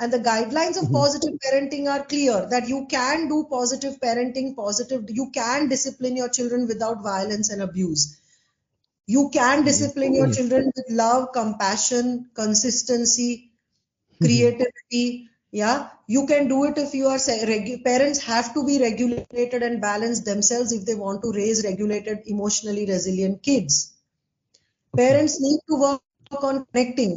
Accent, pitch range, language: Indian, 220-270 Hz, English